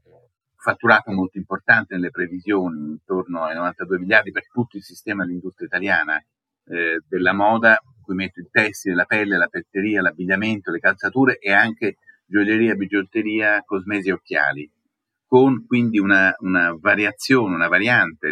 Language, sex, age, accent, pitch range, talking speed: Italian, male, 40-59, native, 90-115 Hz, 140 wpm